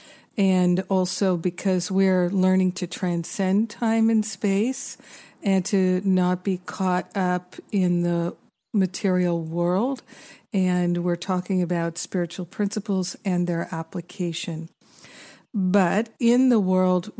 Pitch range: 175-195 Hz